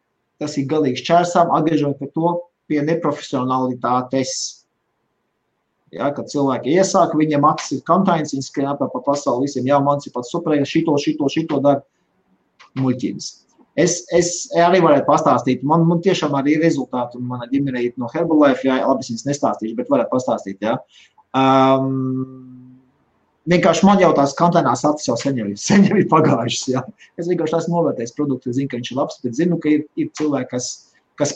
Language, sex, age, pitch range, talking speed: English, male, 30-49, 130-165 Hz, 155 wpm